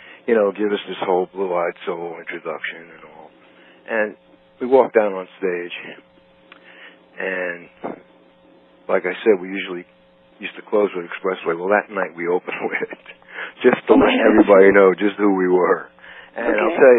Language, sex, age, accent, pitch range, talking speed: English, male, 60-79, American, 85-110 Hz, 170 wpm